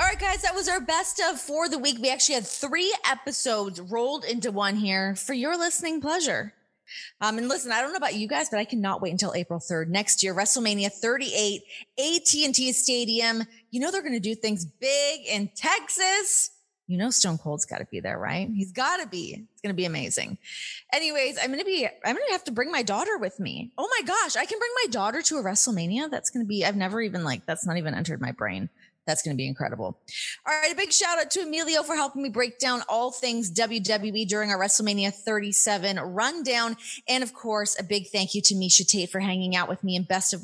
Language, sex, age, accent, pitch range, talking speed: English, female, 20-39, American, 185-275 Hz, 235 wpm